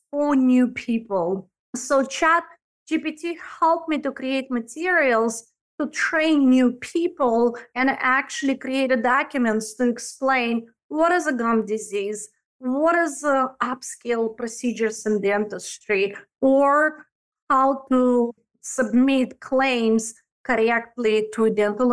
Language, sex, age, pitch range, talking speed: English, female, 30-49, 230-300 Hz, 110 wpm